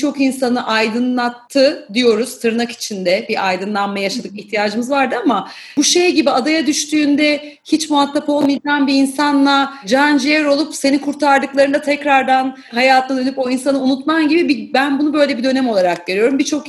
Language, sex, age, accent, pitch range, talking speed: Turkish, female, 30-49, native, 225-285 Hz, 150 wpm